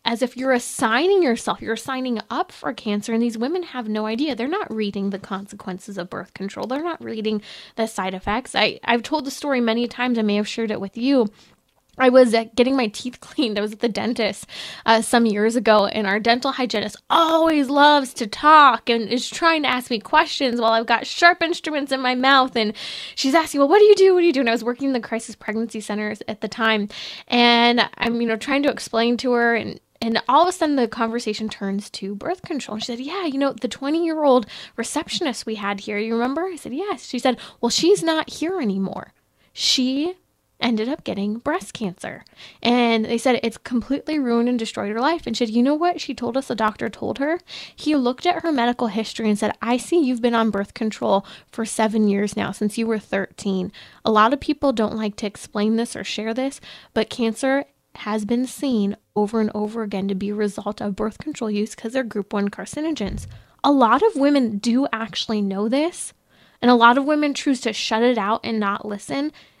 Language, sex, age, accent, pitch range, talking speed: English, female, 20-39, American, 215-275 Hz, 220 wpm